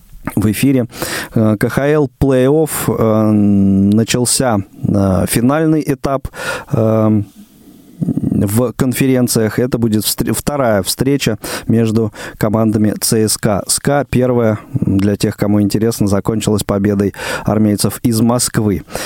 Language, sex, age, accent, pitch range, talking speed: Russian, male, 20-39, native, 110-140 Hz, 95 wpm